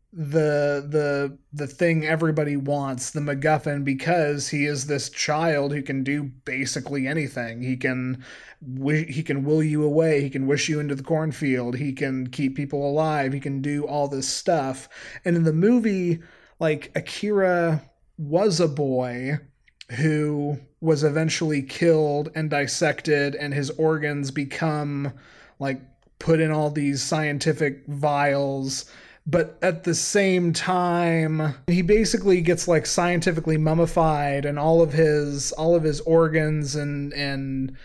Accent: American